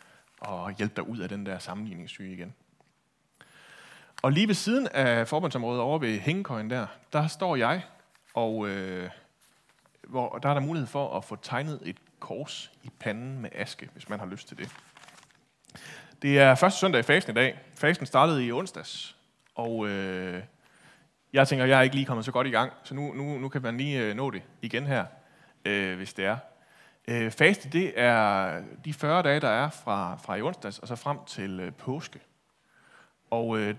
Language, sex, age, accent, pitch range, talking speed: Danish, male, 30-49, native, 110-150 Hz, 190 wpm